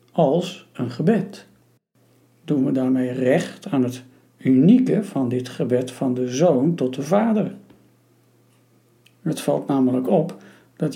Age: 60-79